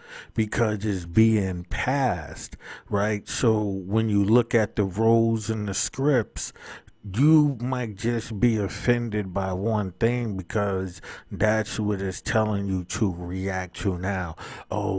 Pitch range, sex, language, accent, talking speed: 95-115 Hz, male, English, American, 135 wpm